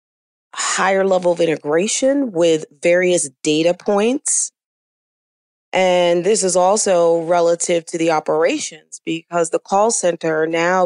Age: 40-59